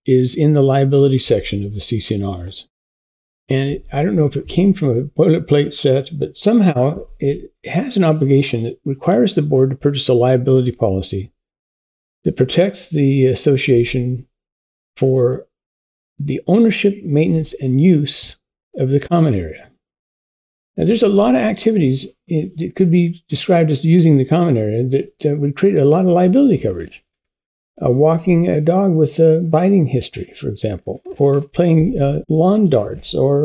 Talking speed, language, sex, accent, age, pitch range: 160 wpm, English, male, American, 60-79, 130-180 Hz